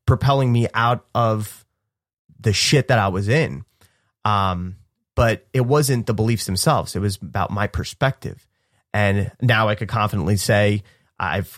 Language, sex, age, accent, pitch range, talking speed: English, male, 30-49, American, 105-125 Hz, 150 wpm